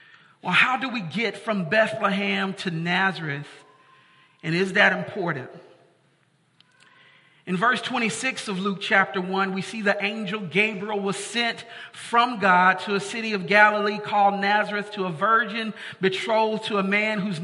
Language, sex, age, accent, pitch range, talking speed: English, male, 40-59, American, 185-225 Hz, 150 wpm